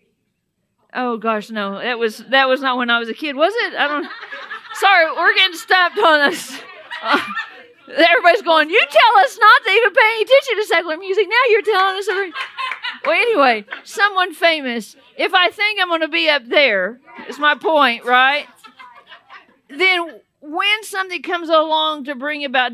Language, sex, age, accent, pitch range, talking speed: English, female, 50-69, American, 235-340 Hz, 180 wpm